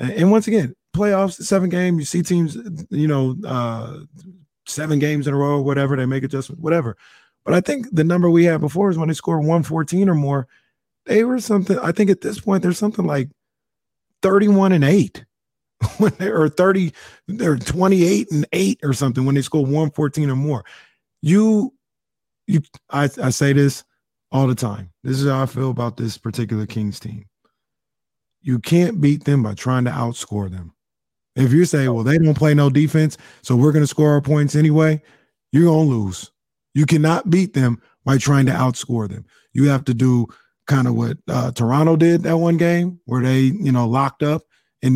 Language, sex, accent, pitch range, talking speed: English, male, American, 125-165 Hz, 195 wpm